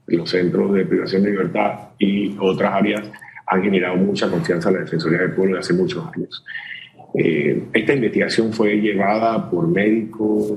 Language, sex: Spanish, male